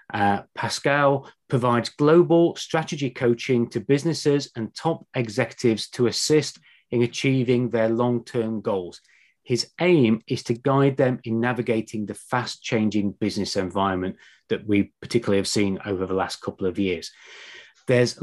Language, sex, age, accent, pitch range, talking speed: English, male, 30-49, British, 110-135 Hz, 140 wpm